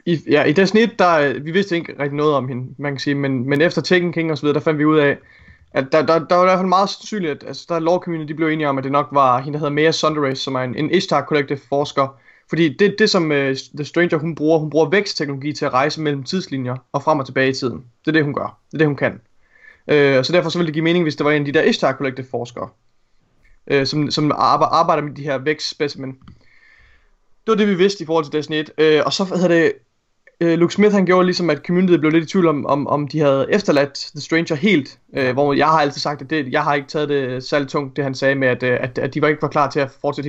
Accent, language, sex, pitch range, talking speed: native, Danish, male, 140-170 Hz, 275 wpm